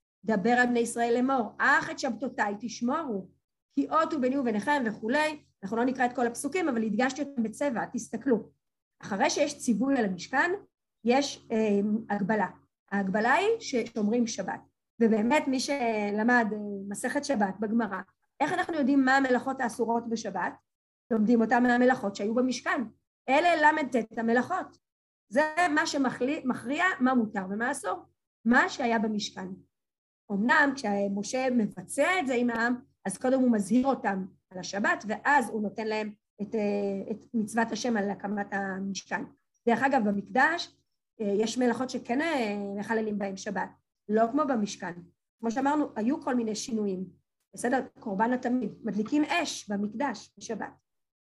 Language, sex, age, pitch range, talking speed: Hebrew, female, 30-49, 210-270 Hz, 140 wpm